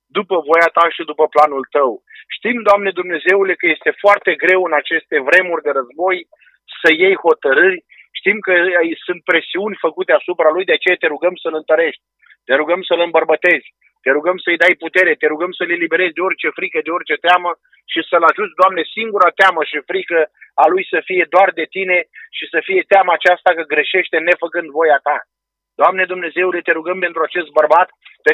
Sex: male